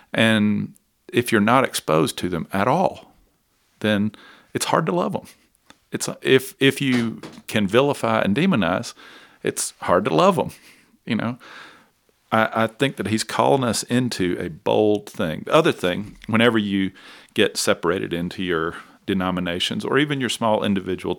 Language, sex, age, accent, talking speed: English, male, 50-69, American, 160 wpm